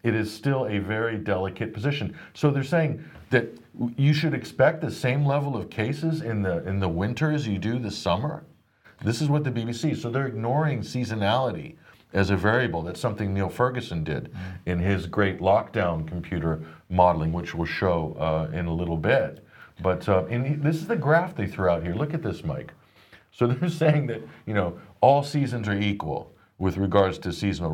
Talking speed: 195 wpm